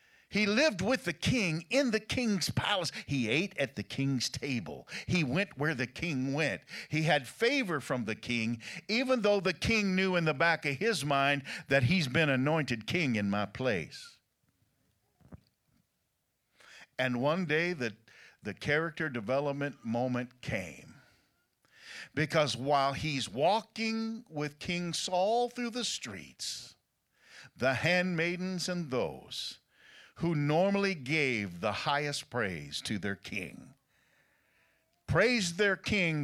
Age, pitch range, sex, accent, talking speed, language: 50-69, 125-175 Hz, male, American, 135 wpm, English